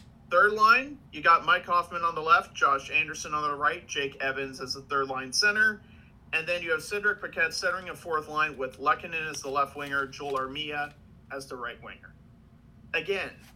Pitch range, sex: 140-220 Hz, male